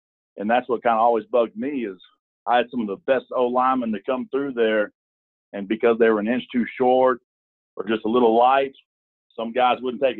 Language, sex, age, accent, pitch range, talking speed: English, male, 40-59, American, 95-115 Hz, 220 wpm